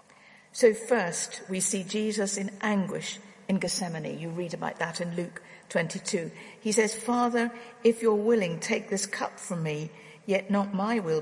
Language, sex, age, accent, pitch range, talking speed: English, female, 50-69, British, 180-225 Hz, 165 wpm